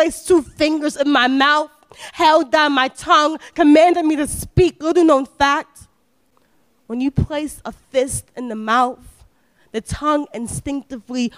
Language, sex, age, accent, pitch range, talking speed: English, female, 20-39, American, 250-295 Hz, 150 wpm